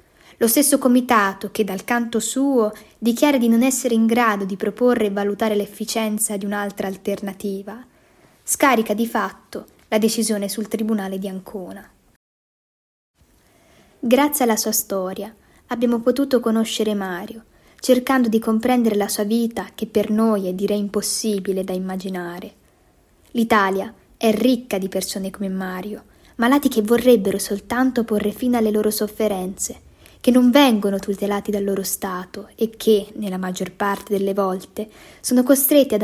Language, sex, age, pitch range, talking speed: Italian, female, 20-39, 200-240 Hz, 140 wpm